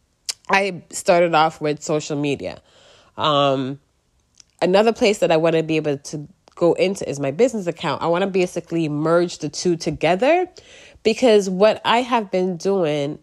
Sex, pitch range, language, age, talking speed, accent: female, 150-195 Hz, English, 30-49, 165 wpm, American